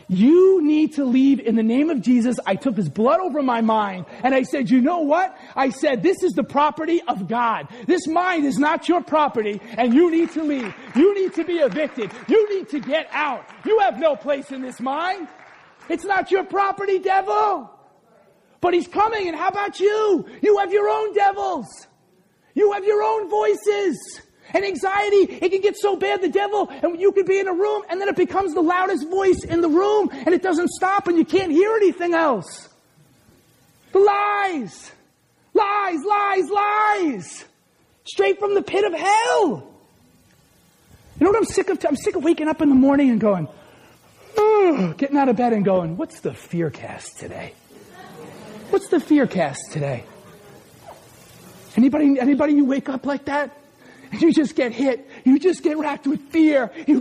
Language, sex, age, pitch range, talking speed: English, male, 40-59, 265-380 Hz, 185 wpm